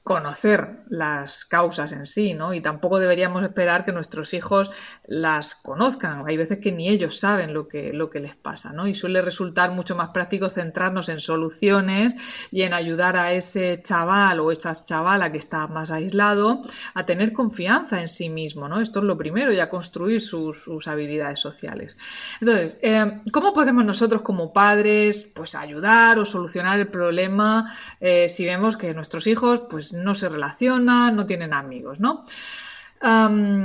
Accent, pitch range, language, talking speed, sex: Spanish, 170-225 Hz, Spanish, 170 wpm, female